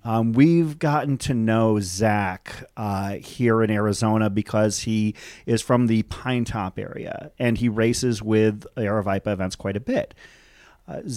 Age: 40-59